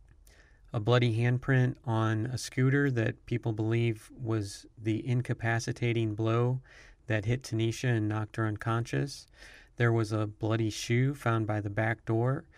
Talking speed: 145 wpm